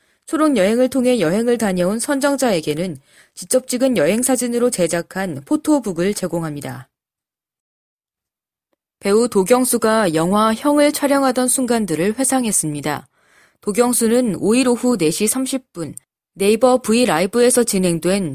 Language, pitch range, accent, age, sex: Korean, 175-255 Hz, native, 20-39, female